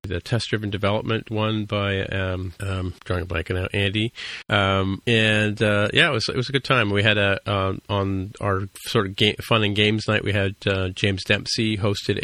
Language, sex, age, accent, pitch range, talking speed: English, male, 40-59, American, 95-110 Hz, 210 wpm